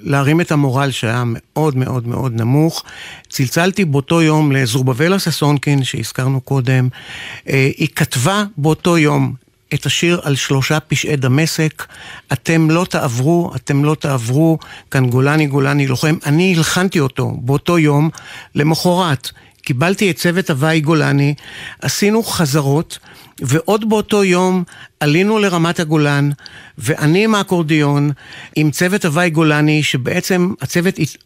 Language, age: Hebrew, 50-69